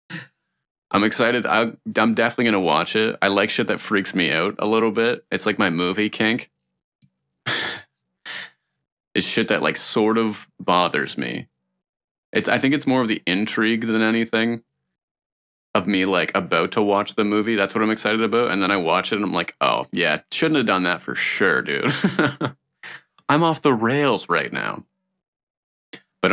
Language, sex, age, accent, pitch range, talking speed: English, male, 30-49, American, 90-115 Hz, 180 wpm